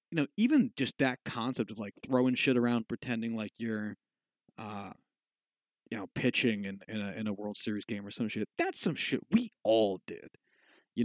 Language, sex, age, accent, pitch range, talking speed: English, male, 30-49, American, 110-145 Hz, 195 wpm